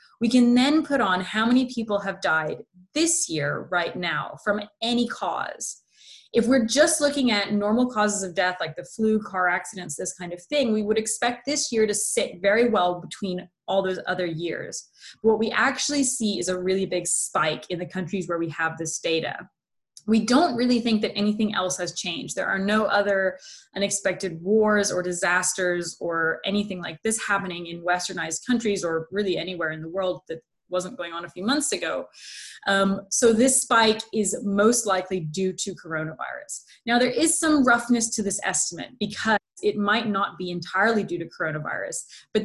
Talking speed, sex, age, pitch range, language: 190 wpm, female, 20-39, 180-225 Hz, English